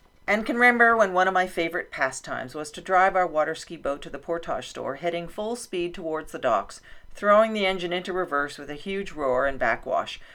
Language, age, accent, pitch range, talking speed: English, 40-59, American, 150-195 Hz, 215 wpm